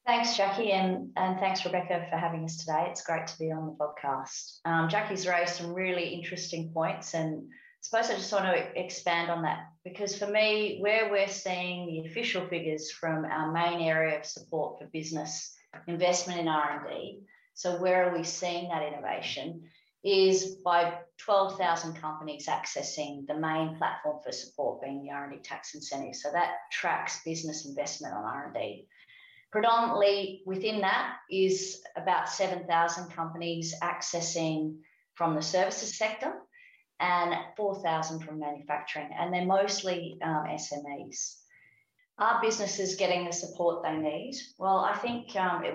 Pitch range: 155-190 Hz